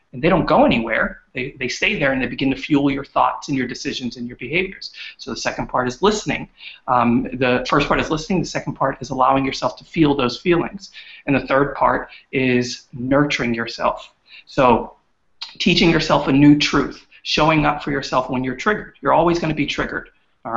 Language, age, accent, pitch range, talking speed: English, 30-49, American, 130-170 Hz, 205 wpm